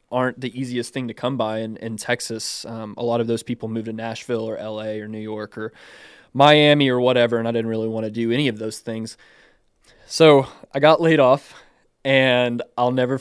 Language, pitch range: English, 115-125 Hz